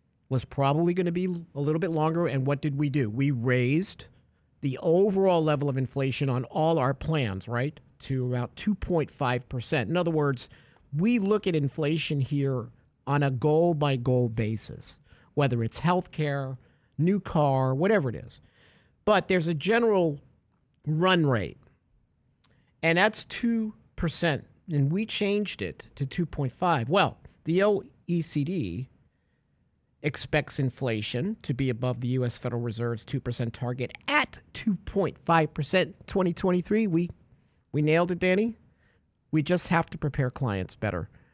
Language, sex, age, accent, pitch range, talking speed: English, male, 50-69, American, 130-180 Hz, 135 wpm